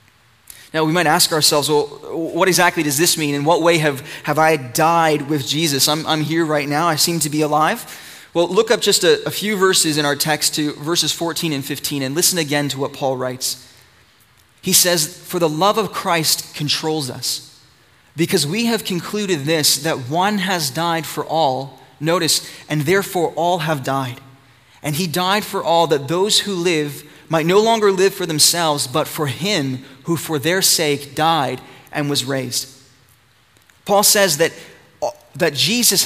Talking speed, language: 185 wpm, English